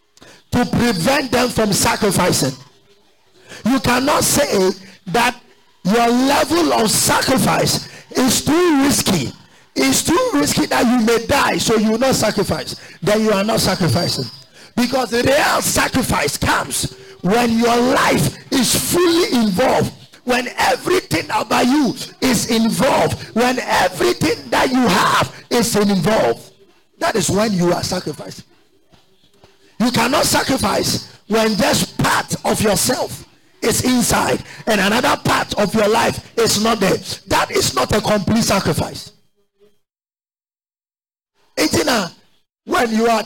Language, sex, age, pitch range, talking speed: English, male, 50-69, 180-245 Hz, 125 wpm